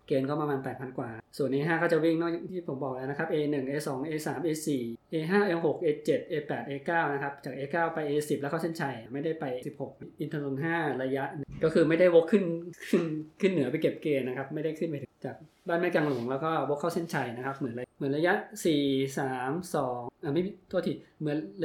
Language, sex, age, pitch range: Thai, male, 20-39, 140-165 Hz